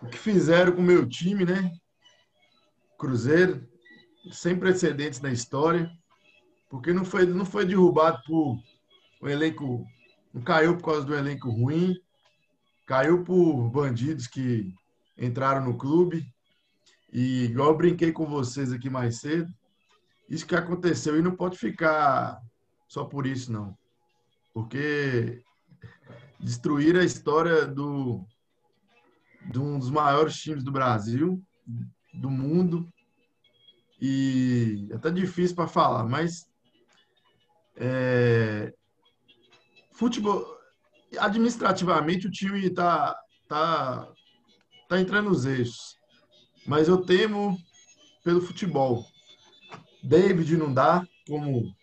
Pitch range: 125-175 Hz